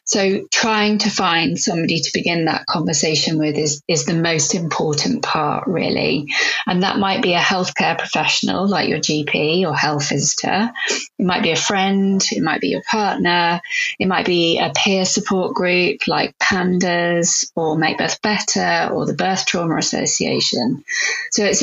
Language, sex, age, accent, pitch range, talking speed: English, female, 30-49, British, 165-200 Hz, 165 wpm